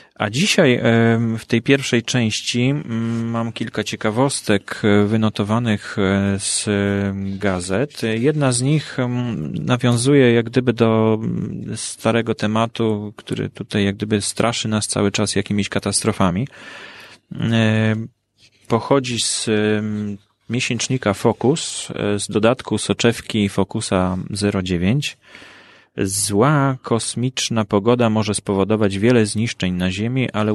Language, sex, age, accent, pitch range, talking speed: Polish, male, 30-49, native, 105-120 Hz, 100 wpm